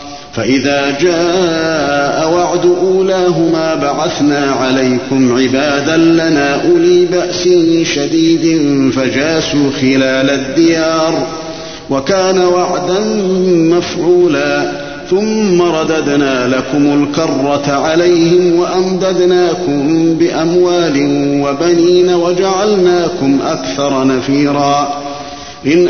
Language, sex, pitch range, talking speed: Arabic, male, 145-180 Hz, 65 wpm